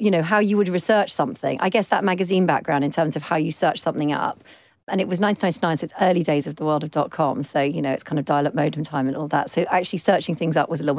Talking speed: 295 wpm